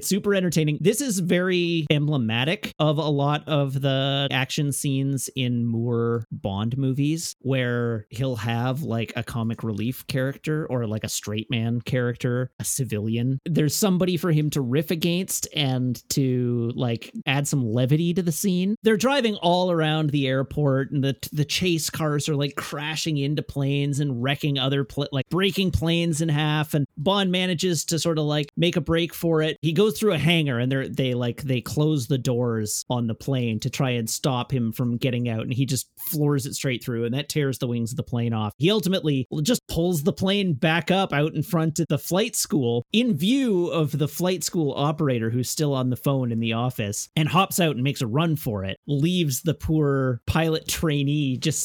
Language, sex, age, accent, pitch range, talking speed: English, male, 30-49, American, 125-160 Hz, 200 wpm